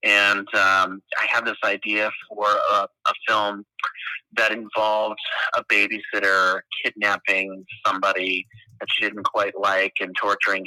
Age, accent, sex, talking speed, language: 30-49, American, male, 130 wpm, English